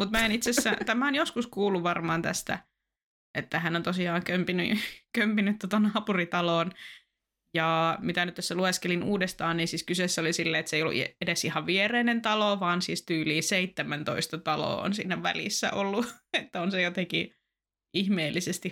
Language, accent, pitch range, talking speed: Finnish, native, 170-210 Hz, 165 wpm